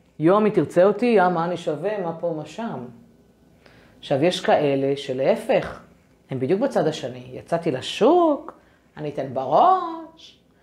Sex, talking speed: female, 140 wpm